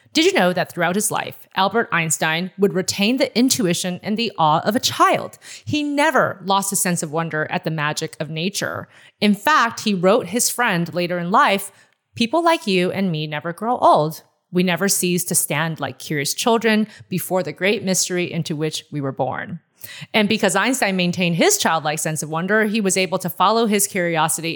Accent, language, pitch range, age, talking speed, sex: American, English, 160-210 Hz, 30-49, 200 wpm, female